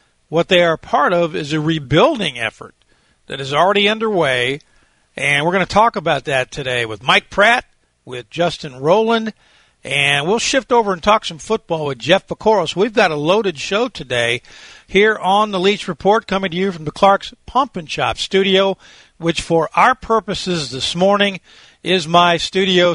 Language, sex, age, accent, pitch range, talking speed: English, male, 50-69, American, 130-190 Hz, 180 wpm